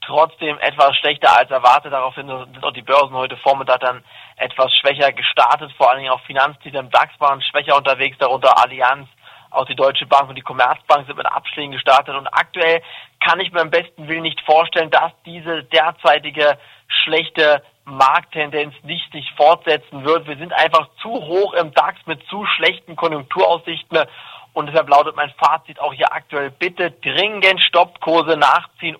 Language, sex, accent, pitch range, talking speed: German, male, German, 140-165 Hz, 170 wpm